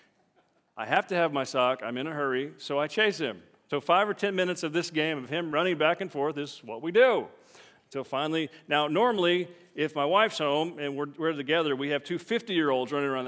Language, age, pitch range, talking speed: English, 40-59, 140-170 Hz, 225 wpm